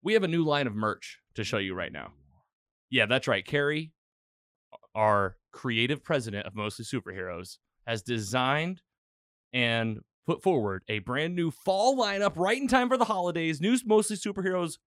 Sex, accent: male, American